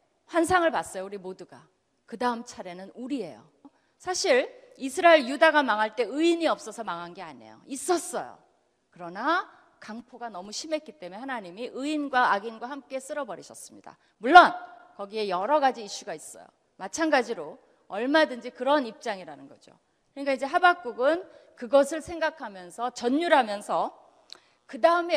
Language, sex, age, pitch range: Korean, female, 30-49, 230-320 Hz